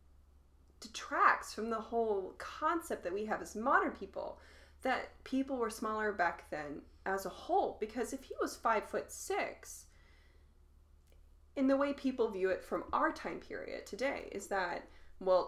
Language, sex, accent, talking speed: English, female, American, 160 wpm